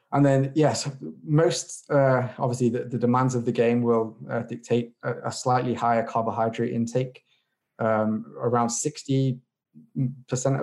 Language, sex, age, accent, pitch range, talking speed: English, male, 20-39, British, 115-130 Hz, 135 wpm